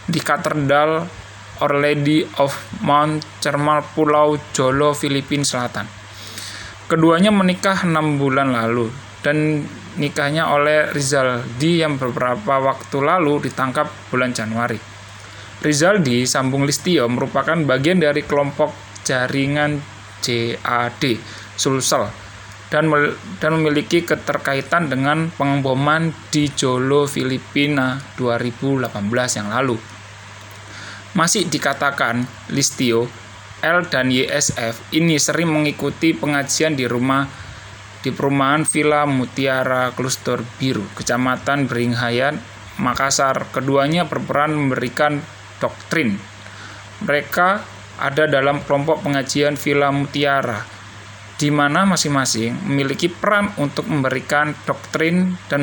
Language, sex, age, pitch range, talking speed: Indonesian, male, 20-39, 115-150 Hz, 95 wpm